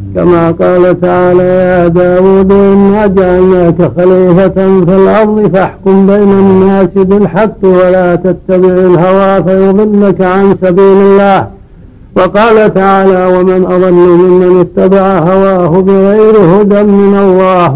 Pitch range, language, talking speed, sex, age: 180-195 Hz, Arabic, 105 wpm, male, 60-79